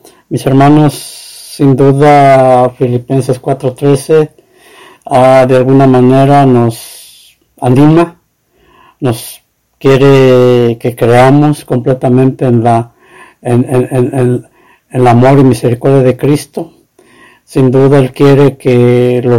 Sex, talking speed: male, 110 wpm